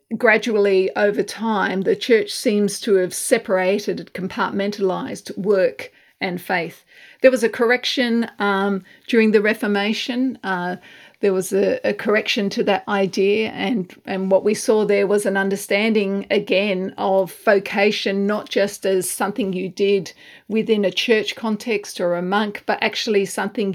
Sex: female